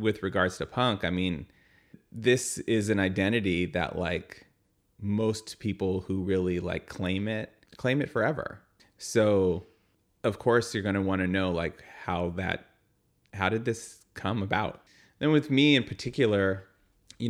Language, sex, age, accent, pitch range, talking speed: English, male, 30-49, American, 90-105 Hz, 155 wpm